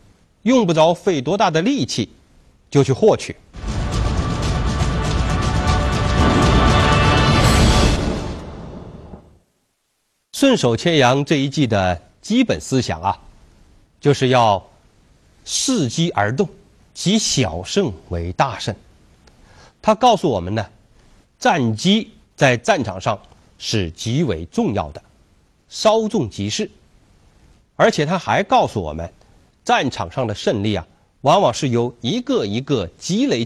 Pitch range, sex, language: 100-160 Hz, male, Chinese